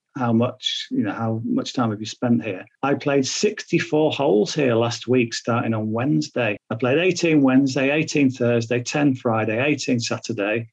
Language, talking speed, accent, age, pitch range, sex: English, 175 wpm, British, 40-59, 115-140 Hz, male